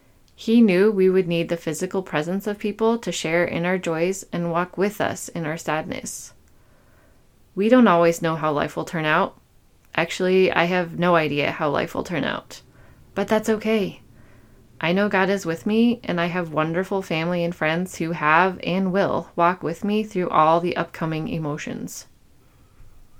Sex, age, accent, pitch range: female, 20-39, American, 155-200 Hz